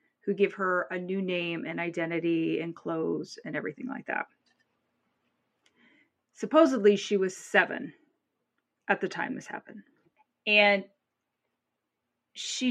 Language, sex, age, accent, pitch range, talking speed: English, female, 30-49, American, 170-235 Hz, 120 wpm